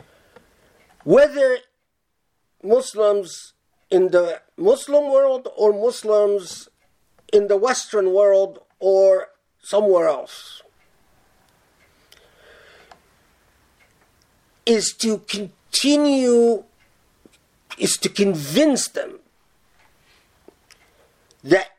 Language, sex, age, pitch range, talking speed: English, male, 50-69, 190-260 Hz, 65 wpm